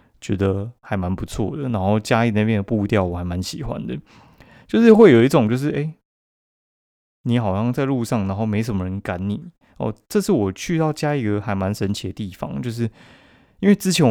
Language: Chinese